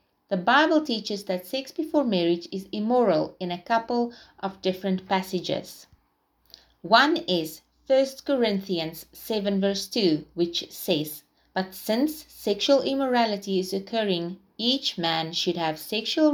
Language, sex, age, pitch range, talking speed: English, female, 30-49, 175-225 Hz, 130 wpm